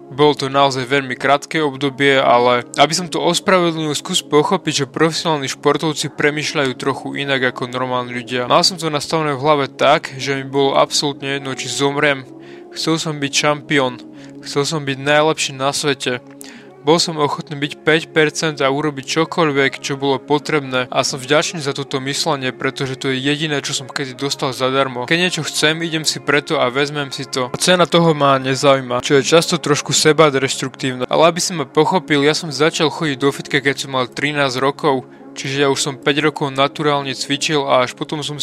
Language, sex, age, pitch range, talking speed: Slovak, male, 20-39, 135-155 Hz, 190 wpm